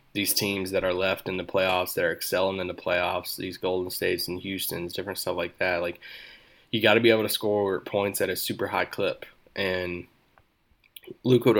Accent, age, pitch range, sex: American, 20-39, 95-100 Hz, male